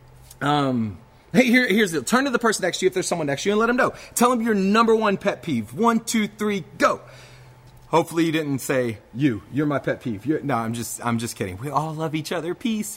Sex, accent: male, American